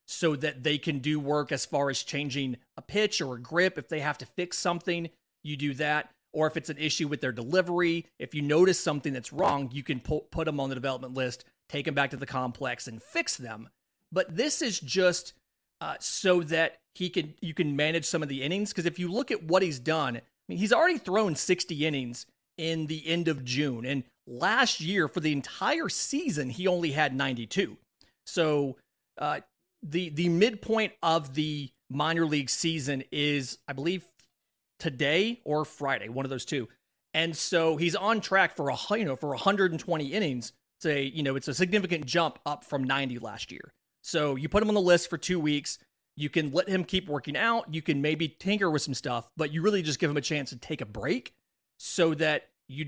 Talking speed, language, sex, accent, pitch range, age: 210 wpm, English, male, American, 140-175 Hz, 40-59